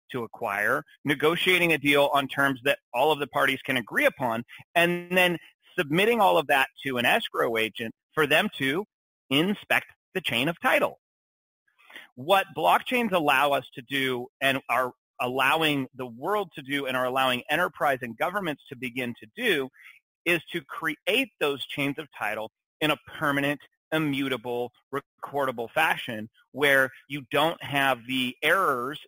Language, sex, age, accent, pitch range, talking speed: English, male, 30-49, American, 130-155 Hz, 155 wpm